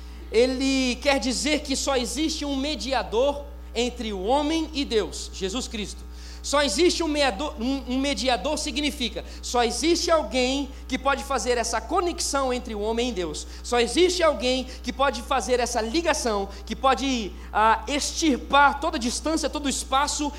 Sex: male